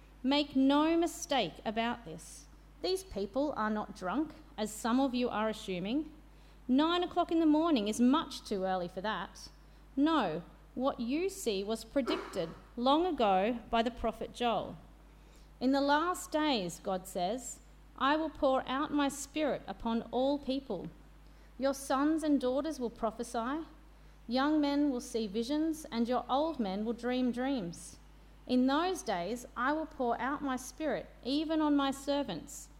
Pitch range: 225-285 Hz